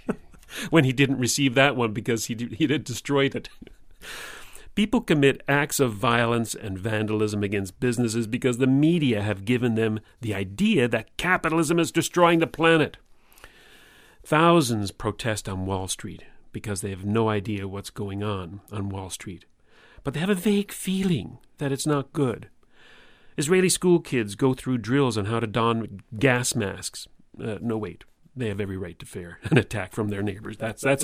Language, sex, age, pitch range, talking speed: English, male, 40-59, 110-155 Hz, 170 wpm